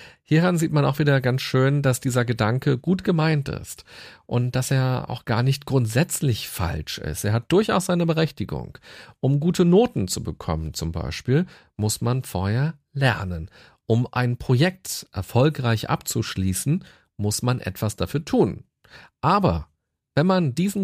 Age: 40-59